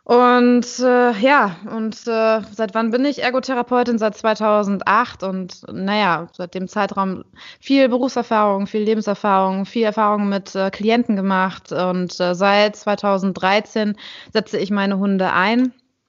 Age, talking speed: 20-39, 135 wpm